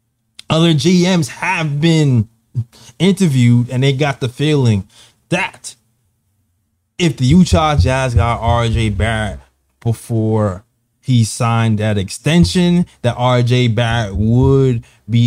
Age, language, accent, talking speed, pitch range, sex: 20-39, English, American, 110 wpm, 115-150 Hz, male